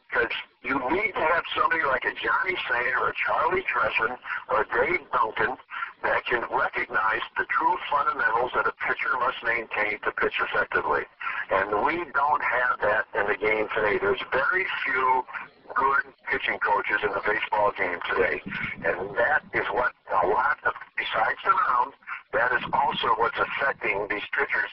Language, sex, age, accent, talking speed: English, male, 60-79, American, 165 wpm